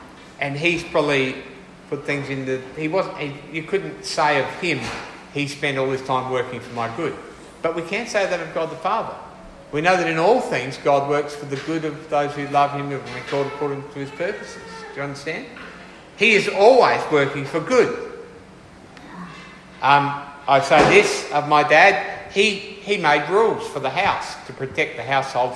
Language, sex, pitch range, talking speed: English, male, 135-180 Hz, 195 wpm